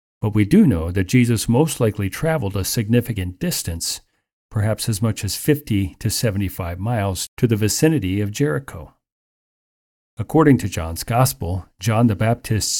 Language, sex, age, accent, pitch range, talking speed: English, male, 40-59, American, 95-125 Hz, 150 wpm